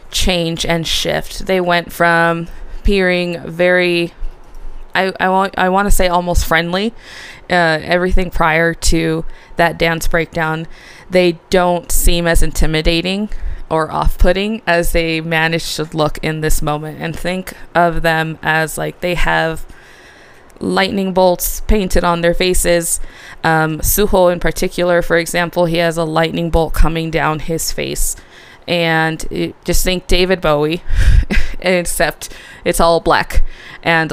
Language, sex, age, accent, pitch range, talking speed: English, female, 20-39, American, 155-175 Hz, 135 wpm